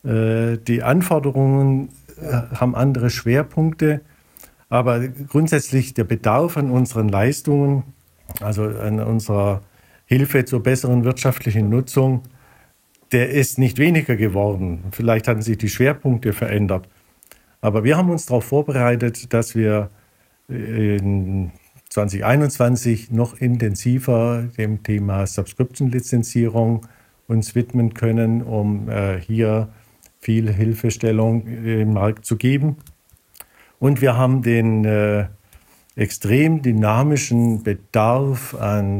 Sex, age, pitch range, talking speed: male, 50-69, 105-125 Hz, 100 wpm